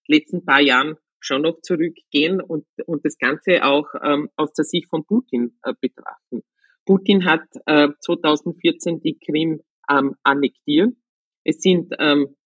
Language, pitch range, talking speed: German, 140-175 Hz, 145 wpm